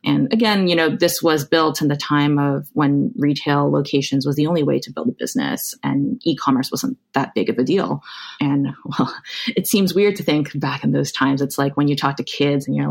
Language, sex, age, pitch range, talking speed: English, female, 20-39, 140-185 Hz, 230 wpm